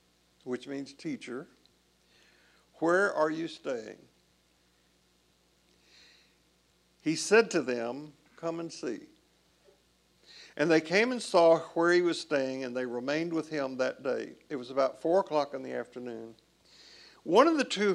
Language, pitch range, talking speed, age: English, 125-175 Hz, 140 wpm, 60-79